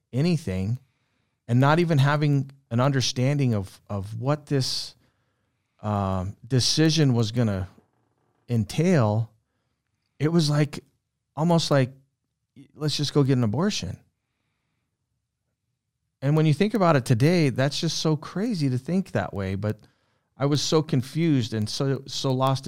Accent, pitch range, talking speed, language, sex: American, 105-135 Hz, 140 wpm, English, male